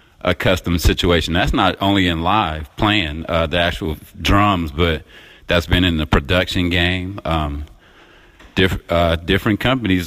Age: 30-49